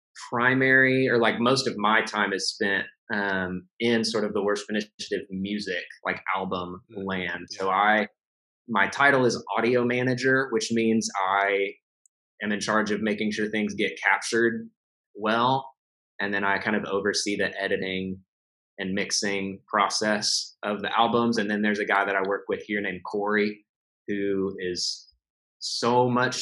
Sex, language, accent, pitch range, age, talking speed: male, English, American, 100-120 Hz, 20-39, 160 wpm